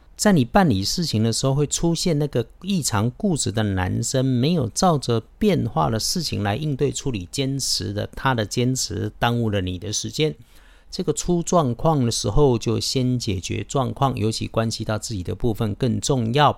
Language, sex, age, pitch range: Chinese, male, 50-69, 95-135 Hz